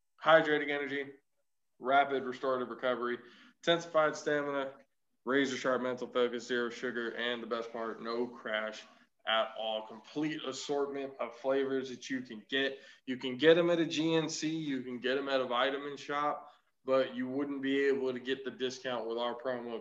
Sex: male